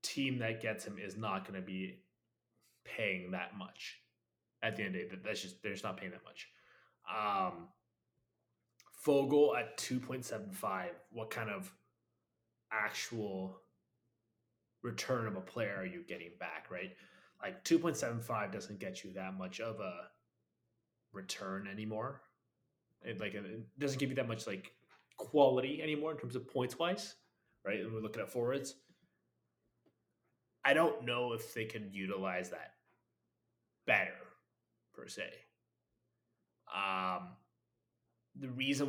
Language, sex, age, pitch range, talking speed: English, male, 20-39, 105-135 Hz, 135 wpm